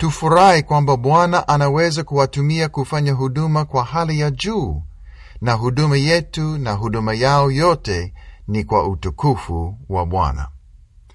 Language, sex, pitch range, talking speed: Swahili, male, 100-145 Hz, 125 wpm